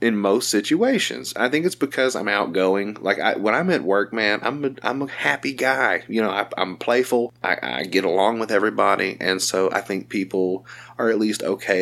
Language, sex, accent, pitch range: English, male, American, 100-130 Hz